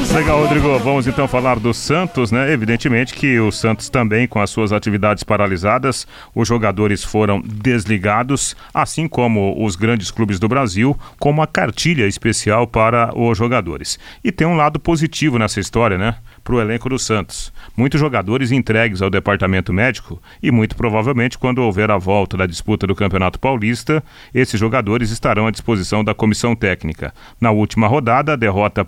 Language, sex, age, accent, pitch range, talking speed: Portuguese, male, 40-59, Brazilian, 105-130 Hz, 165 wpm